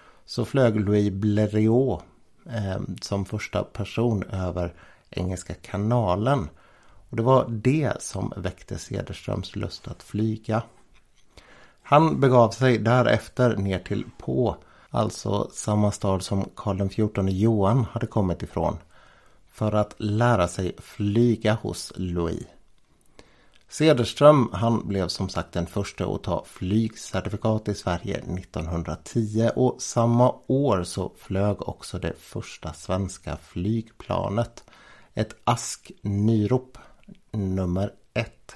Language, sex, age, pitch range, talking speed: Swedish, male, 60-79, 95-120 Hz, 110 wpm